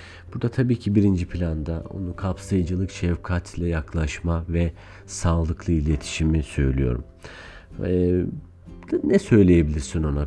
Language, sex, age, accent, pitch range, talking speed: Turkish, male, 50-69, native, 70-95 Hz, 100 wpm